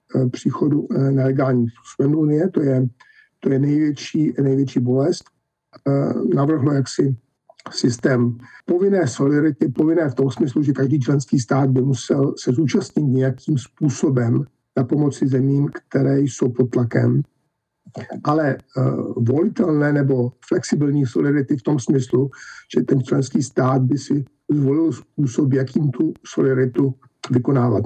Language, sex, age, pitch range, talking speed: Slovak, male, 50-69, 130-150 Hz, 125 wpm